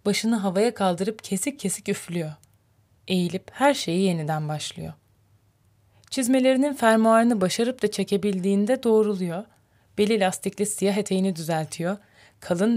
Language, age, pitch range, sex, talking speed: Turkish, 30-49, 155-215 Hz, female, 110 wpm